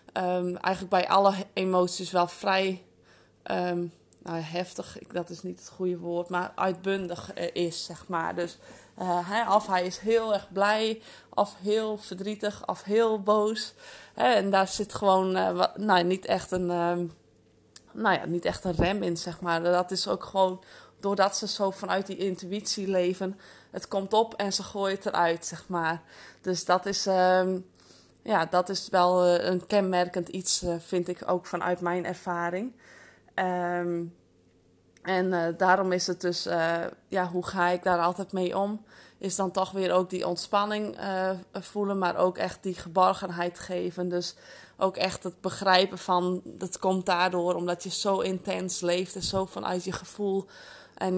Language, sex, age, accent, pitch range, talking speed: Dutch, female, 20-39, Dutch, 175-195 Hz, 155 wpm